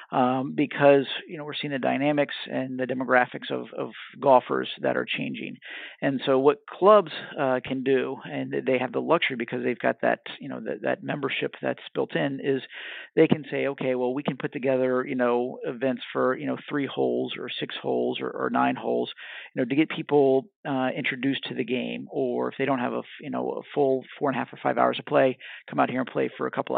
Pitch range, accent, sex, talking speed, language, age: 120-140 Hz, American, male, 230 wpm, English, 40-59